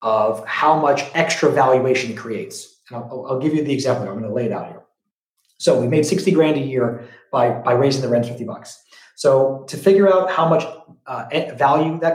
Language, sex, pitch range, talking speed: English, male, 125-160 Hz, 205 wpm